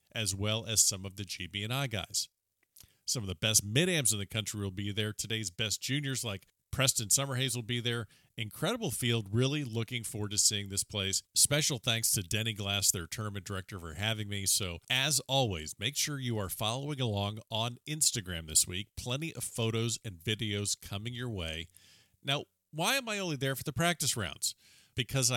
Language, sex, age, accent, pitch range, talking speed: English, male, 50-69, American, 100-130 Hz, 190 wpm